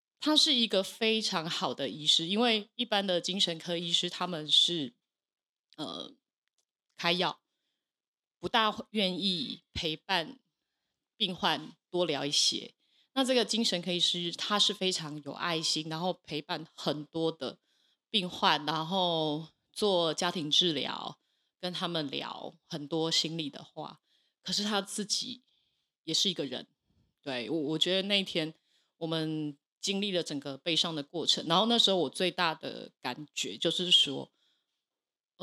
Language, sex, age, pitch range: Chinese, female, 20-39, 160-210 Hz